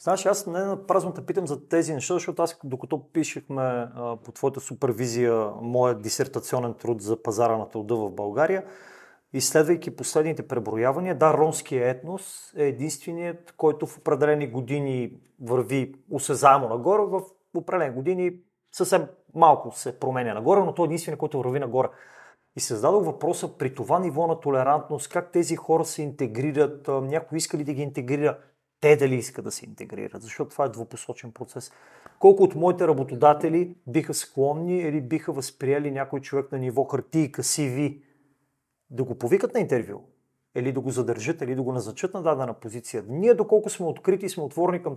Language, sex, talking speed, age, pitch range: Bulgarian, male, 165 wpm, 30-49, 130-170 Hz